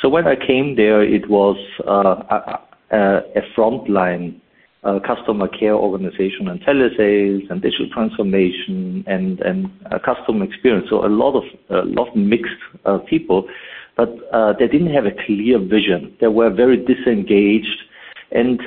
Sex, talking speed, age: male, 160 wpm, 50-69